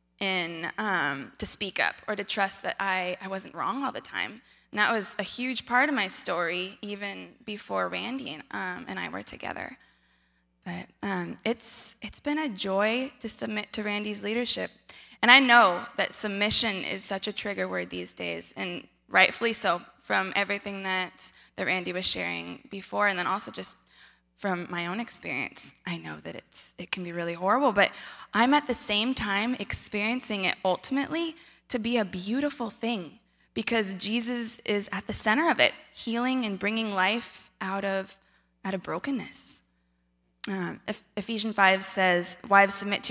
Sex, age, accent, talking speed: female, 20-39, American, 175 wpm